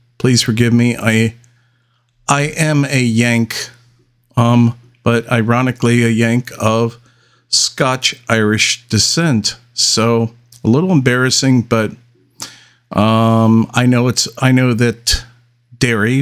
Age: 50-69